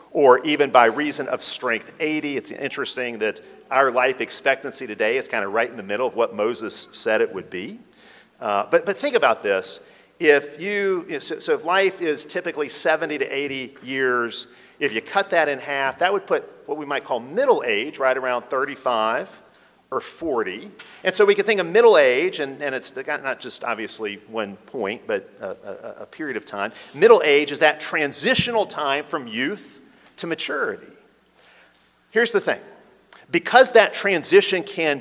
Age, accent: 50-69, American